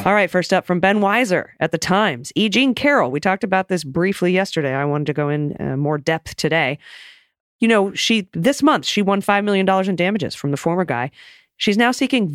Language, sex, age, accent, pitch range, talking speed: English, female, 30-49, American, 150-200 Hz, 225 wpm